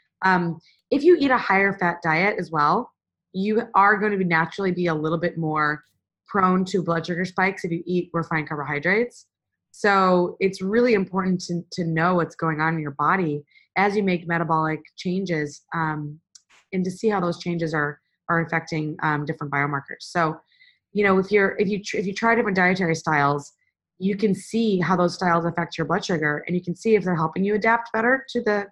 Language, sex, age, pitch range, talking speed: English, female, 20-39, 165-200 Hz, 205 wpm